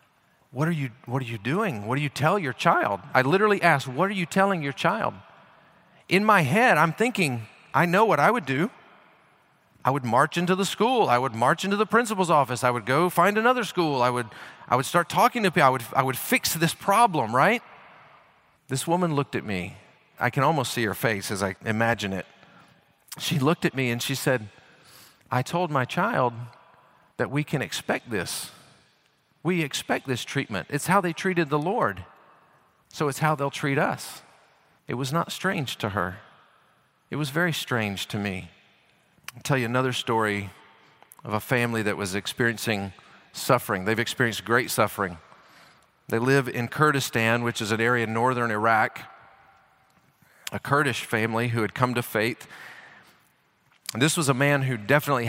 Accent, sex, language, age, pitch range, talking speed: American, male, English, 40-59, 115-165 Hz, 180 wpm